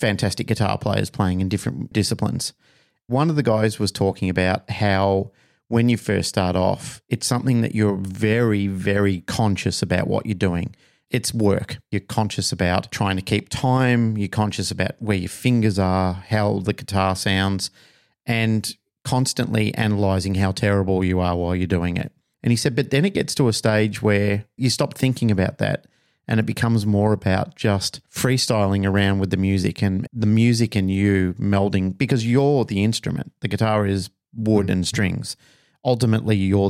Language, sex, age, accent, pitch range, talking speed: English, male, 40-59, Australian, 95-115 Hz, 175 wpm